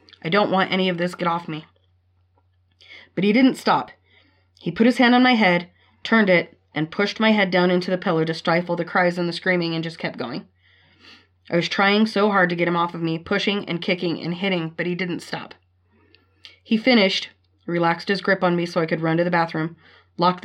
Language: English